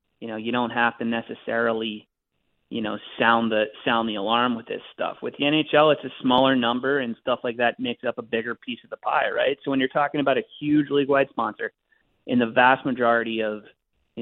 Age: 30-49